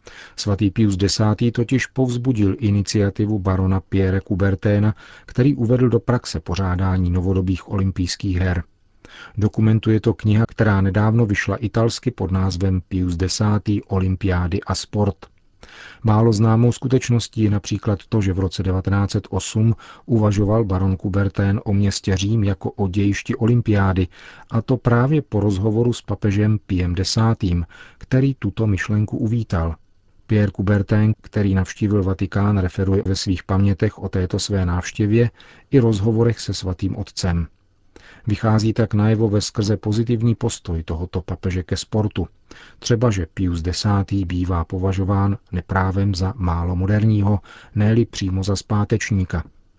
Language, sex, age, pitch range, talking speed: Czech, male, 40-59, 95-110 Hz, 130 wpm